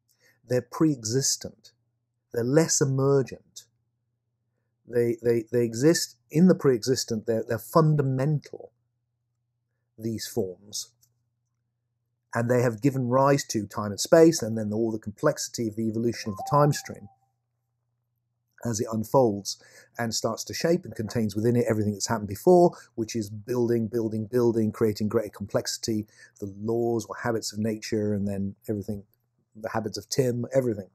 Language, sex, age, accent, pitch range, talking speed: English, male, 50-69, British, 110-130 Hz, 145 wpm